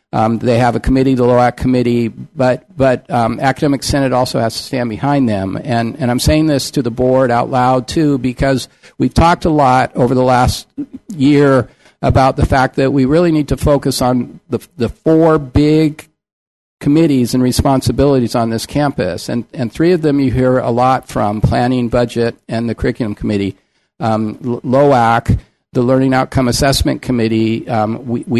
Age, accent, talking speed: 50-69, American, 180 wpm